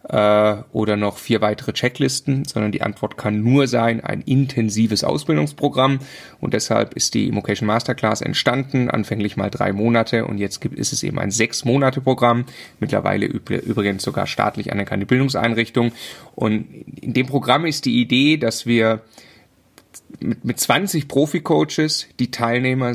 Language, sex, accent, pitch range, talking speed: German, male, German, 110-135 Hz, 140 wpm